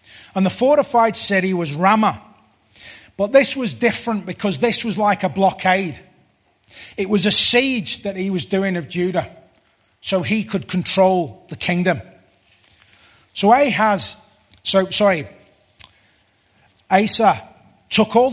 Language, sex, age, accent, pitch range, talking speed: English, male, 30-49, British, 150-215 Hz, 130 wpm